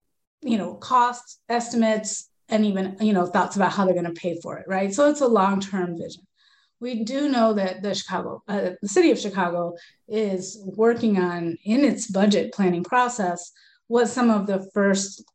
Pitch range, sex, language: 185-220 Hz, female, English